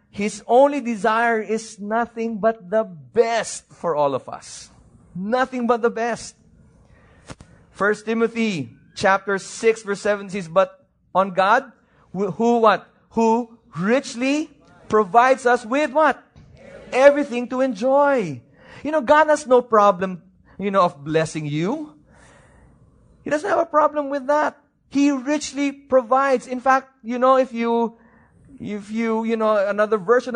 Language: English